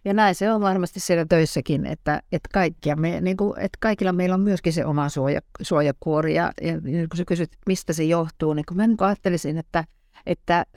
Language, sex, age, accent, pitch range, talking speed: Finnish, female, 60-79, native, 150-185 Hz, 165 wpm